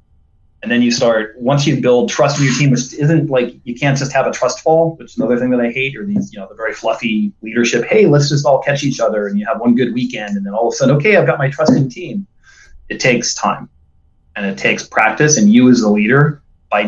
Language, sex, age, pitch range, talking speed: English, male, 30-49, 115-155 Hz, 265 wpm